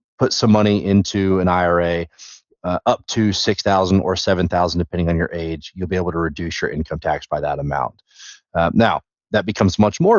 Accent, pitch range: American, 90-110 Hz